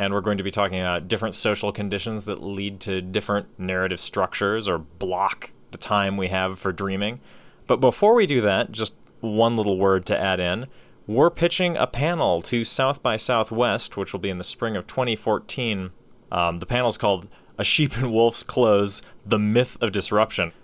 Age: 30-49